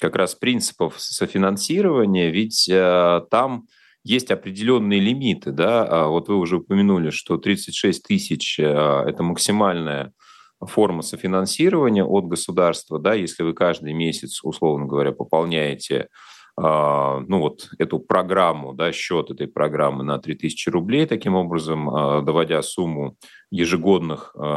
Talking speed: 125 wpm